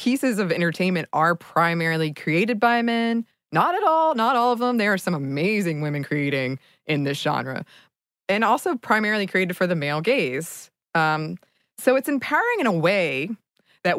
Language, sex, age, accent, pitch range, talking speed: English, female, 20-39, American, 145-185 Hz, 170 wpm